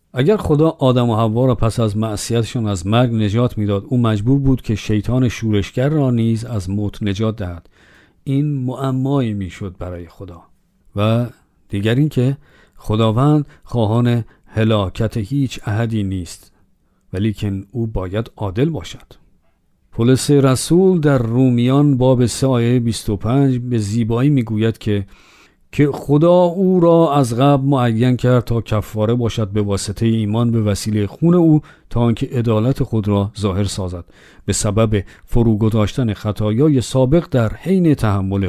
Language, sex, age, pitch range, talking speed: Persian, male, 50-69, 105-130 Hz, 140 wpm